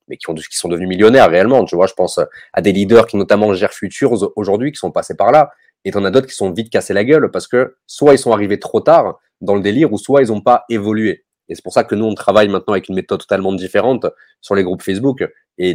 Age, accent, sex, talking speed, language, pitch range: 30-49, French, male, 270 wpm, French, 95-120 Hz